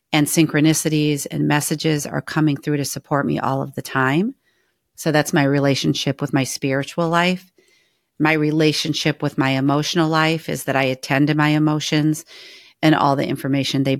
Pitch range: 140-165 Hz